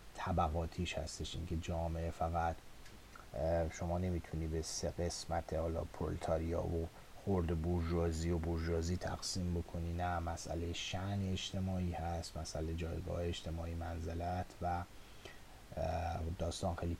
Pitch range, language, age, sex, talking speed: 85-100 Hz, Persian, 30-49, male, 105 wpm